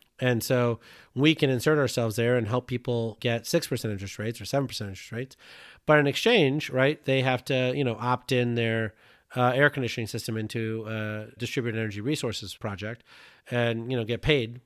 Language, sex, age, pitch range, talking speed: English, male, 30-49, 105-130 Hz, 185 wpm